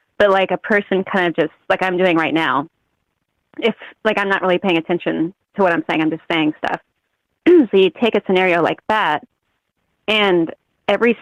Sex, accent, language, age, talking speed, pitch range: female, American, English, 30-49, 195 wpm, 165-210 Hz